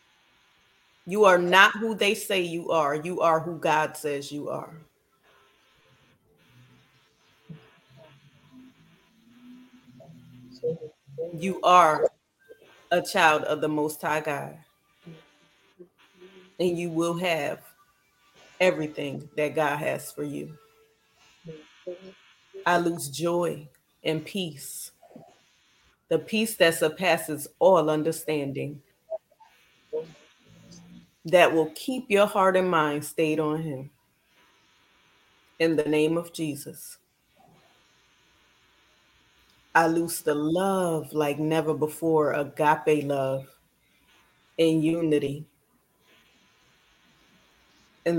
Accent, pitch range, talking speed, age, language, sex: American, 150-185 Hz, 90 wpm, 30-49, English, female